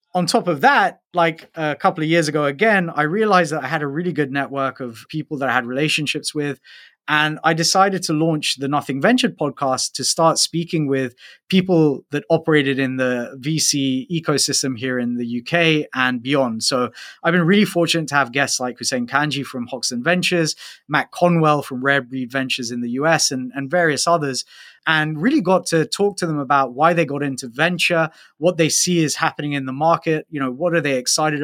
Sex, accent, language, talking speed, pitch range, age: male, British, English, 205 wpm, 135-165 Hz, 20-39